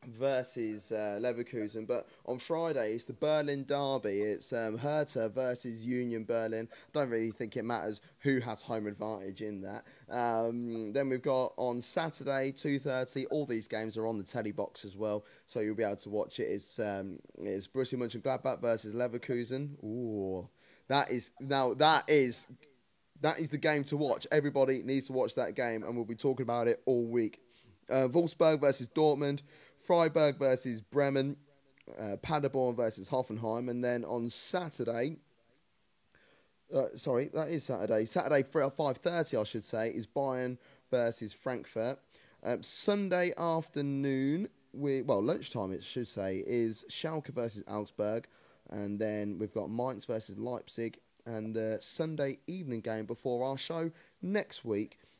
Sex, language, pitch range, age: male, English, 110-140 Hz, 10-29